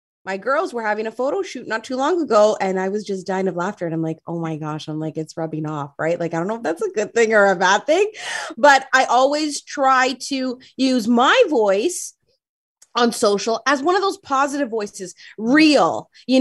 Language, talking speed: English, 225 wpm